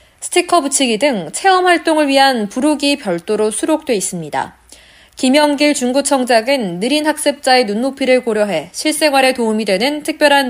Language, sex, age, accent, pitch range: Korean, female, 20-39, native, 205-290 Hz